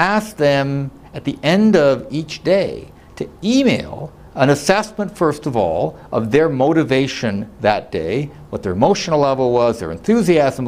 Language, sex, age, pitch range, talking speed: English, male, 60-79, 115-170 Hz, 145 wpm